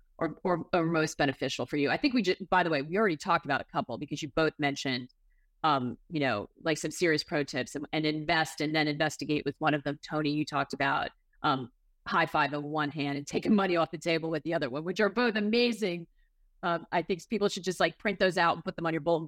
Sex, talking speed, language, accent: female, 255 wpm, English, American